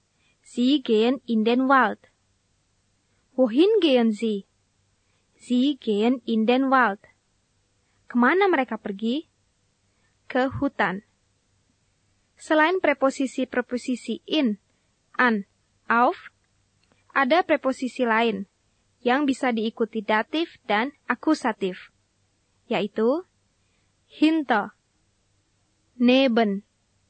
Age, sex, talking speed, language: 20-39, female, 75 wpm, Indonesian